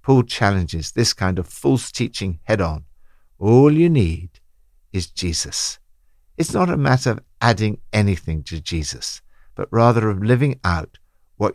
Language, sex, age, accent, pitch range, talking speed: English, male, 60-79, British, 85-130 Hz, 145 wpm